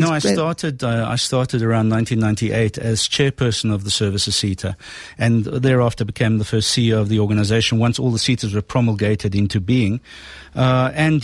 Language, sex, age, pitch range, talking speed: English, male, 50-69, 115-150 Hz, 175 wpm